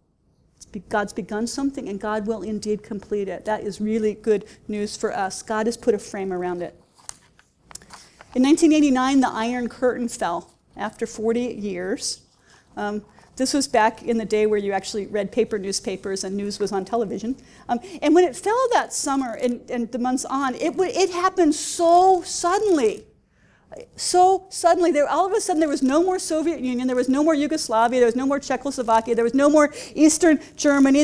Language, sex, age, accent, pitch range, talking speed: English, female, 40-59, American, 230-315 Hz, 185 wpm